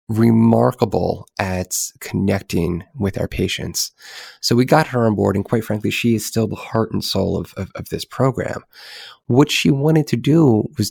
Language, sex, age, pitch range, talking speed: English, male, 30-49, 100-115 Hz, 180 wpm